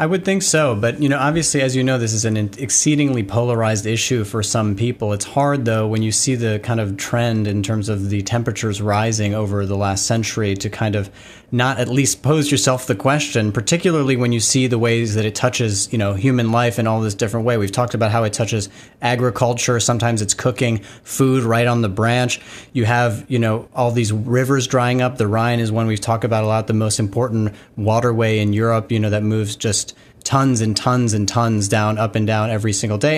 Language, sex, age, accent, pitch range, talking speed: English, male, 30-49, American, 110-135 Hz, 225 wpm